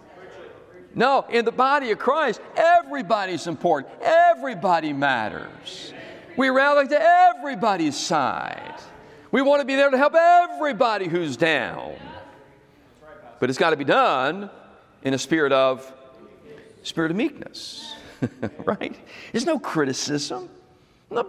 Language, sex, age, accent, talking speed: English, male, 50-69, American, 125 wpm